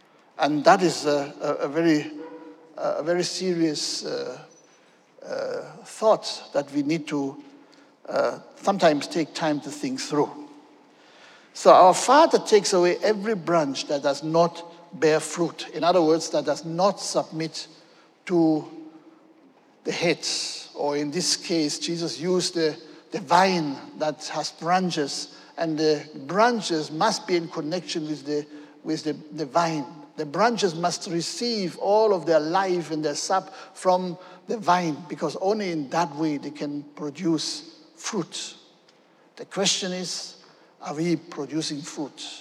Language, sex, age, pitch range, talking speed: English, male, 60-79, 155-200 Hz, 145 wpm